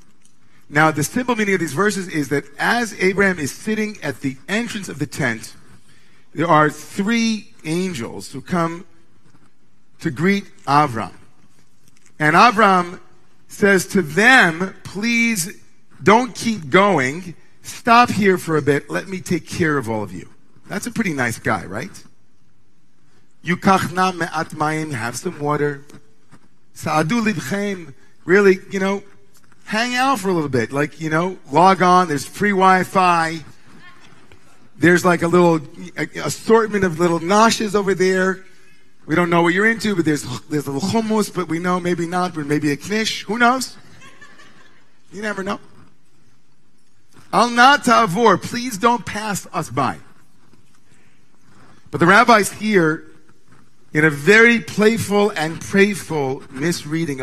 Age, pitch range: 40-59, 150-205 Hz